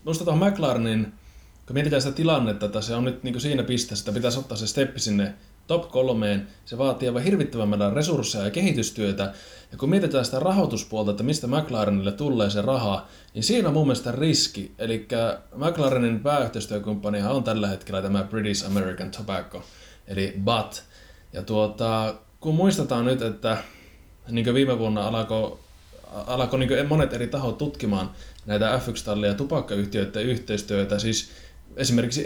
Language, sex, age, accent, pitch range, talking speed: Finnish, male, 20-39, native, 105-135 Hz, 145 wpm